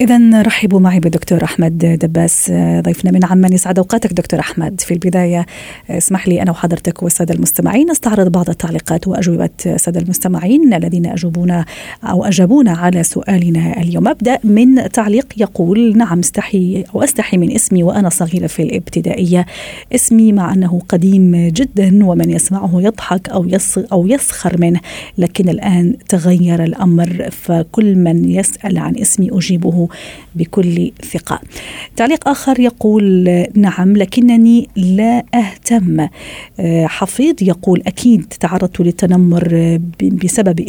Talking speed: 130 wpm